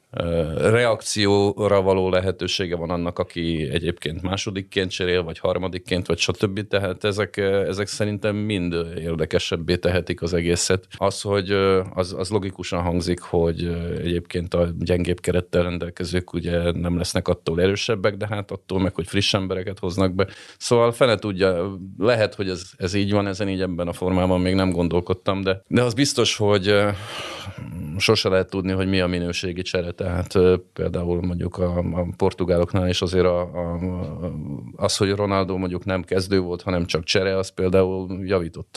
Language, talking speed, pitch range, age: Hungarian, 160 wpm, 90-100 Hz, 40-59